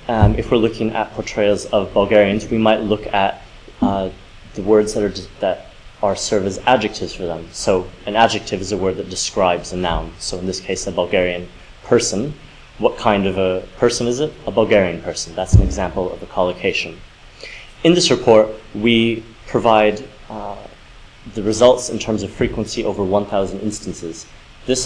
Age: 30-49